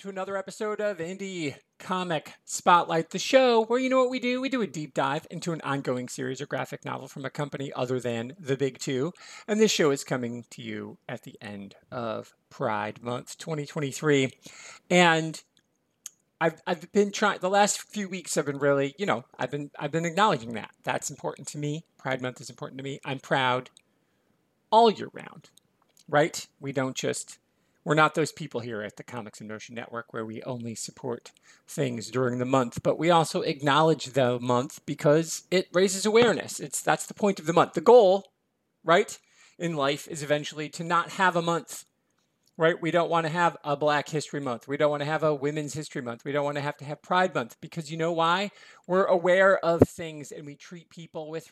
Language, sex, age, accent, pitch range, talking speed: English, male, 40-59, American, 135-175 Hz, 200 wpm